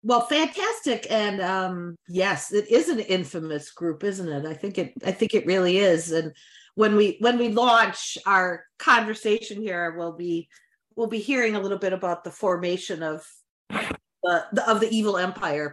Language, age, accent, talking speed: English, 40-59, American, 180 wpm